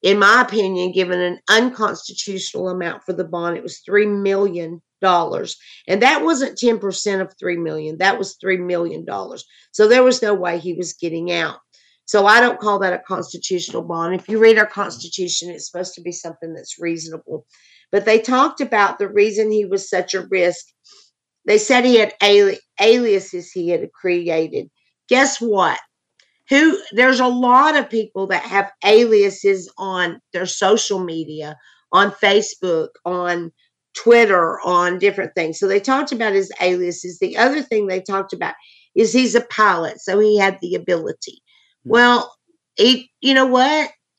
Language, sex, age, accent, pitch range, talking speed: English, female, 50-69, American, 180-240 Hz, 165 wpm